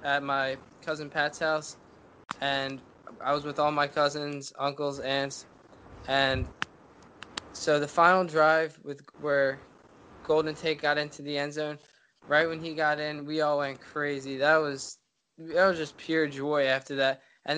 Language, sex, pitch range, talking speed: English, male, 140-155 Hz, 160 wpm